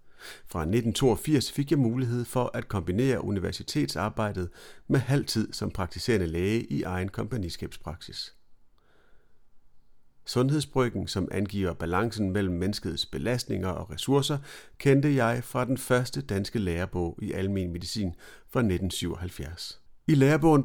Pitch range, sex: 100-130 Hz, male